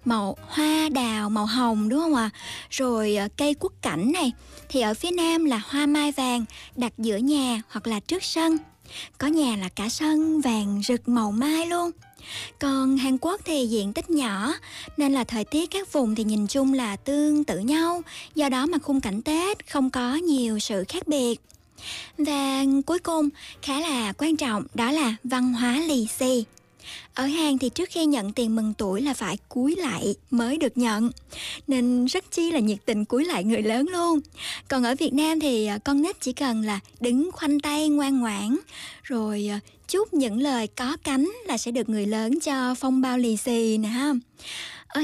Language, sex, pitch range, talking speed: Vietnamese, male, 230-300 Hz, 190 wpm